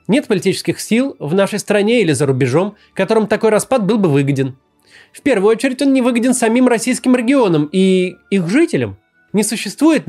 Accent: native